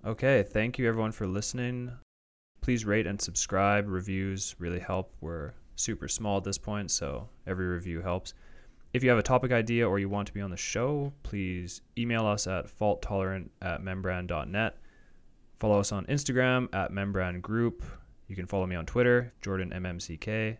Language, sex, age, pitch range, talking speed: English, male, 20-39, 90-115 Hz, 165 wpm